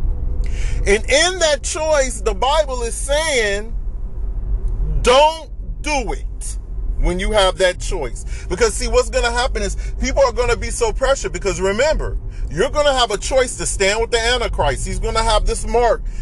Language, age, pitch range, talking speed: English, 30-49, 140-235 Hz, 180 wpm